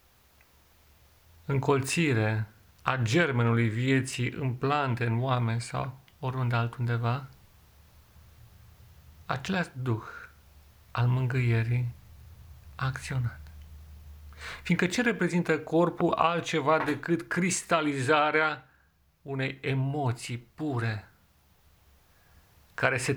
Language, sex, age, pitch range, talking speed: Romanian, male, 40-59, 85-140 Hz, 75 wpm